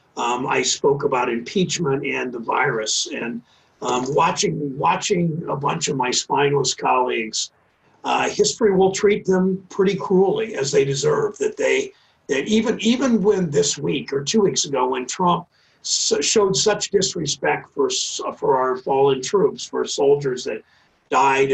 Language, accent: English, American